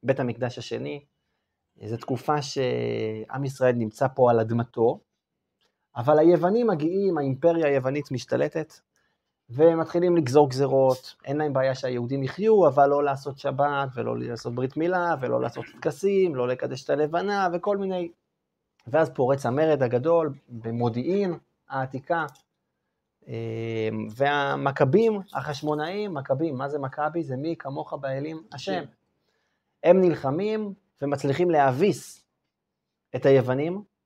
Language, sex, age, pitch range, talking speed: Hebrew, male, 30-49, 130-170 Hz, 115 wpm